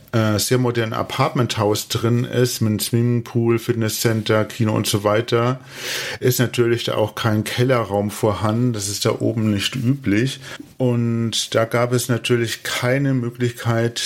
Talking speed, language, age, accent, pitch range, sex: 140 wpm, German, 40-59, German, 105-120 Hz, male